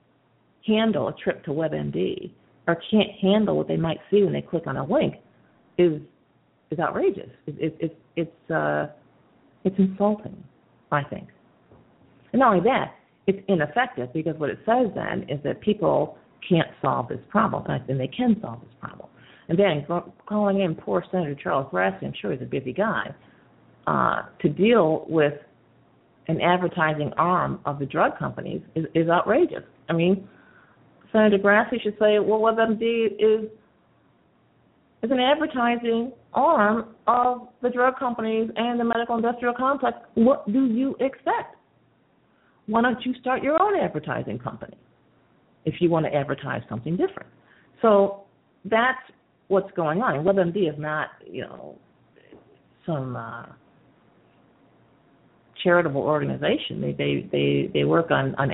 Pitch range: 145-225 Hz